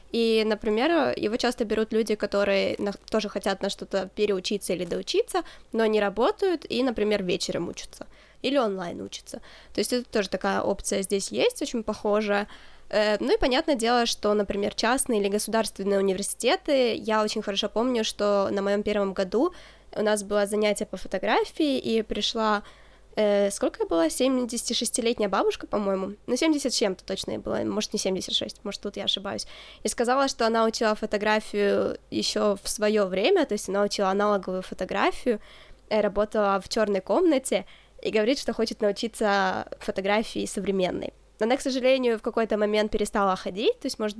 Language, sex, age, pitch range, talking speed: Ukrainian, female, 20-39, 200-240 Hz, 160 wpm